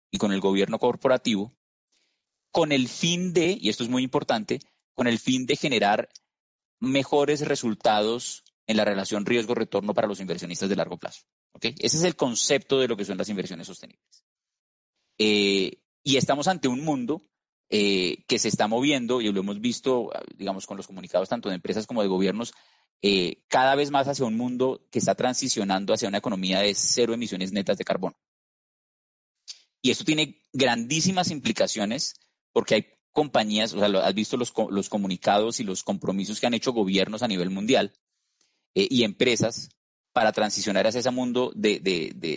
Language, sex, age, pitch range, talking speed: Spanish, male, 30-49, 100-135 Hz, 175 wpm